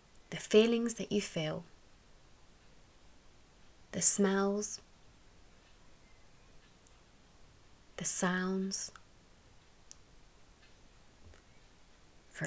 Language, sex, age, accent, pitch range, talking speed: English, female, 20-39, British, 160-200 Hz, 50 wpm